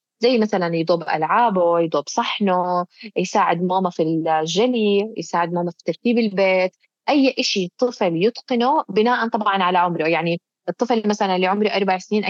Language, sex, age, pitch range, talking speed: Arabic, female, 20-39, 180-235 Hz, 145 wpm